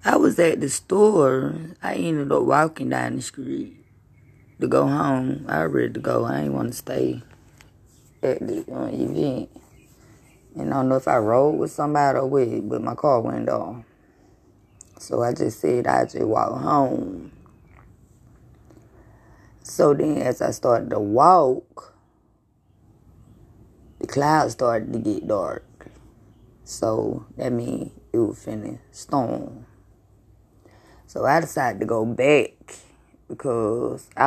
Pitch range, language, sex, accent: 105-135 Hz, English, female, American